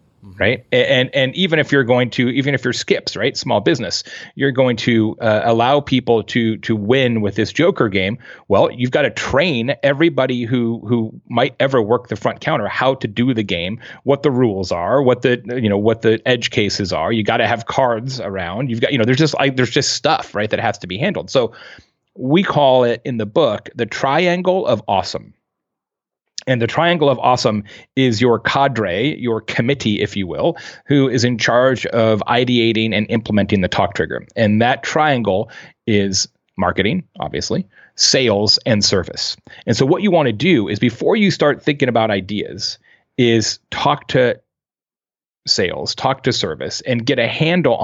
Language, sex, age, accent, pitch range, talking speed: English, male, 30-49, American, 110-135 Hz, 190 wpm